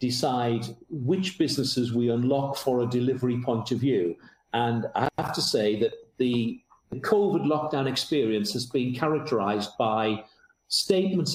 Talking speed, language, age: 135 wpm, English, 50-69